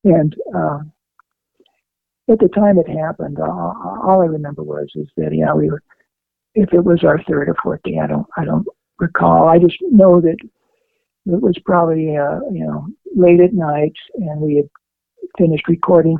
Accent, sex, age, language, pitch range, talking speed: American, male, 60-79, English, 150-185 Hz, 185 wpm